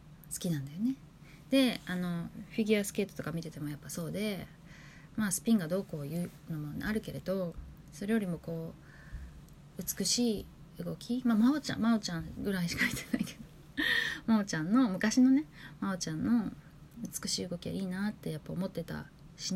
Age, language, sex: 20-39, Japanese, female